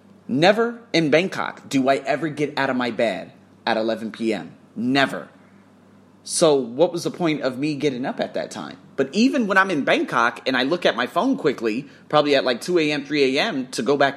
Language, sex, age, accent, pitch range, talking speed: English, male, 30-49, American, 120-175 Hz, 210 wpm